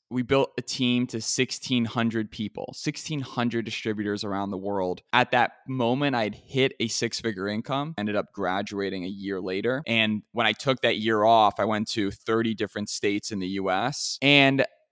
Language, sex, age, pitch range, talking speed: English, male, 20-39, 110-125 Hz, 175 wpm